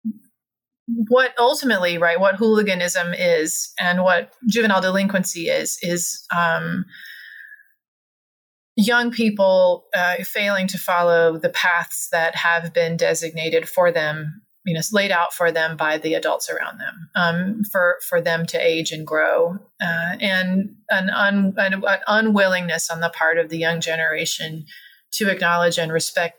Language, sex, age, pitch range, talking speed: English, female, 30-49, 170-205 Hz, 140 wpm